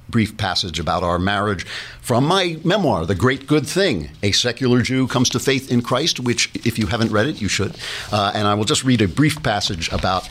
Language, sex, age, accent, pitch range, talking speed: English, male, 60-79, American, 90-120 Hz, 220 wpm